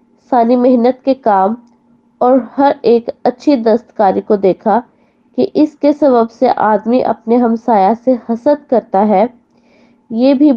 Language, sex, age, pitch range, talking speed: Hindi, female, 20-39, 220-260 Hz, 135 wpm